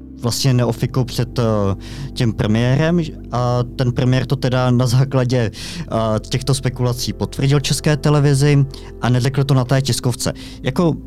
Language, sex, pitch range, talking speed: Czech, male, 110-130 Hz, 140 wpm